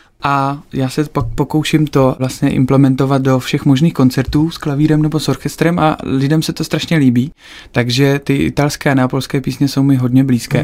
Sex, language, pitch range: male, Czech, 130-145 Hz